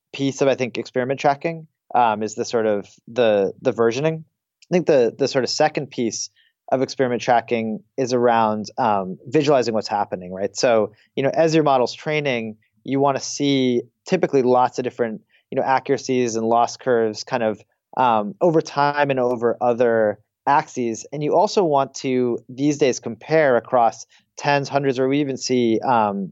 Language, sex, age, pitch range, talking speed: English, male, 30-49, 115-145 Hz, 180 wpm